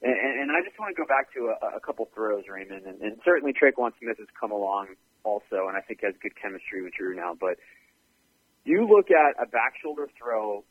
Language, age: English, 30-49